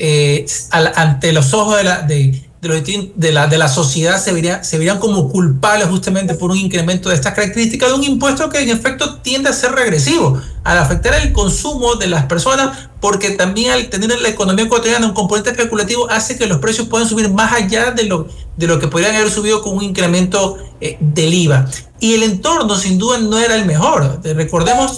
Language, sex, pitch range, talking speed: Spanish, male, 170-235 Hz, 200 wpm